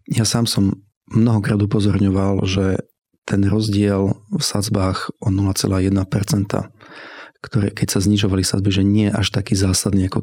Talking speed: 135 wpm